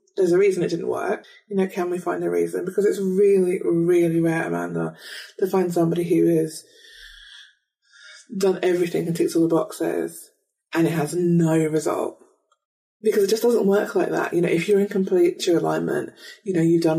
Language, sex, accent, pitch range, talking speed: English, female, British, 165-220 Hz, 195 wpm